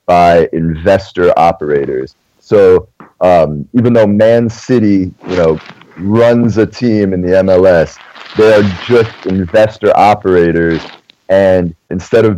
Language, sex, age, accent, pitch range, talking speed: English, male, 30-49, American, 85-105 Hz, 115 wpm